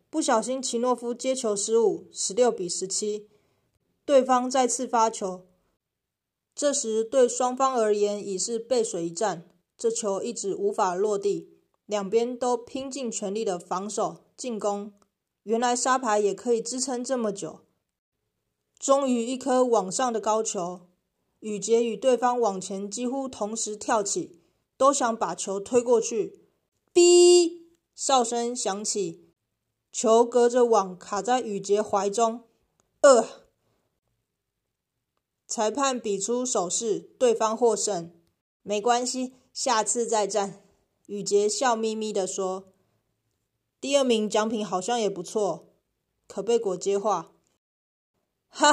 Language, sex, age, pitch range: Chinese, female, 20-39, 200-255 Hz